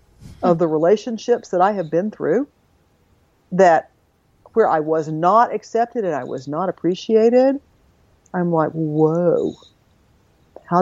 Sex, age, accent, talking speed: female, 50-69, American, 130 wpm